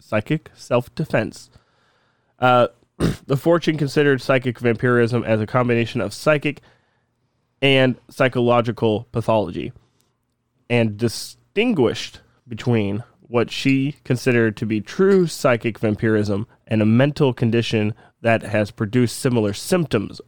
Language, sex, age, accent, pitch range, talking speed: English, male, 20-39, American, 110-130 Hz, 105 wpm